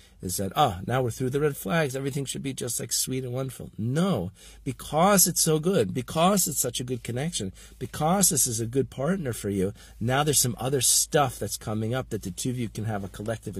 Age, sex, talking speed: 50-69, male, 240 wpm